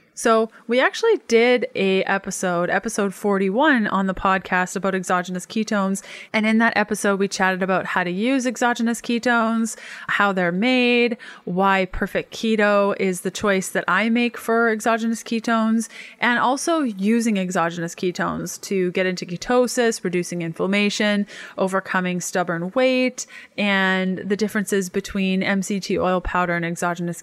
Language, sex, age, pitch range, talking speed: English, female, 20-39, 185-225 Hz, 140 wpm